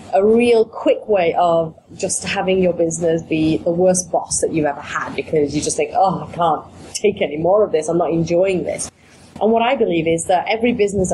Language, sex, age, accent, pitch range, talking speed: English, female, 30-49, British, 175-230 Hz, 220 wpm